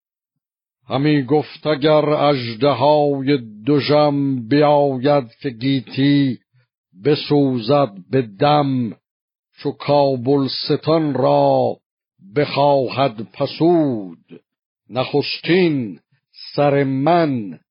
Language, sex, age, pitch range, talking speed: Persian, male, 60-79, 125-145 Hz, 60 wpm